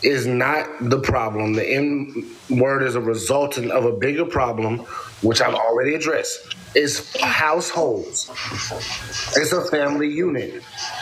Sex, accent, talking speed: male, American, 130 wpm